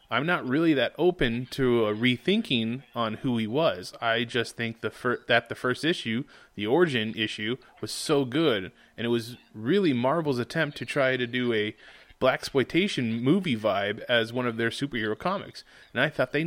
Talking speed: 190 wpm